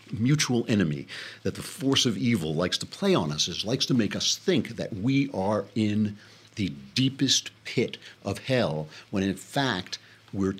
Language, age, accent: English, 60-79, American